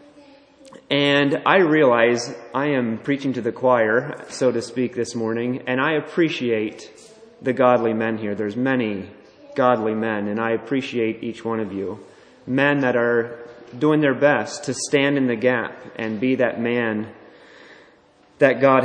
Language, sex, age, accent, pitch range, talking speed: English, male, 30-49, American, 115-135 Hz, 155 wpm